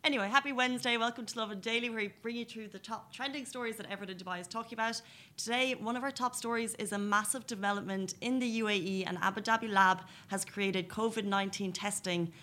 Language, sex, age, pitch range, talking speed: Arabic, female, 30-49, 175-205 Hz, 215 wpm